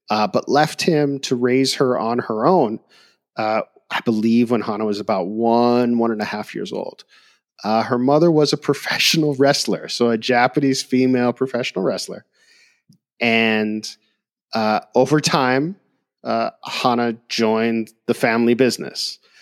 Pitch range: 110-135 Hz